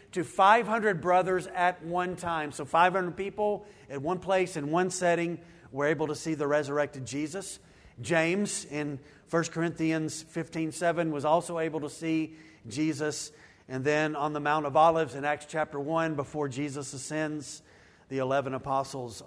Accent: American